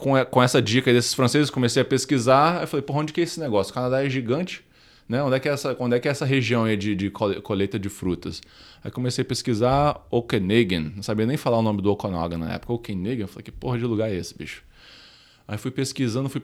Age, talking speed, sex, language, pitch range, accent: 20-39, 240 wpm, male, English, 105-135 Hz, Brazilian